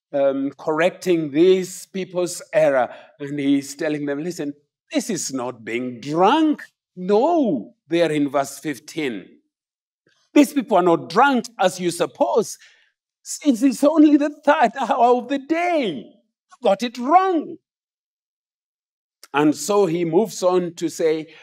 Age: 50-69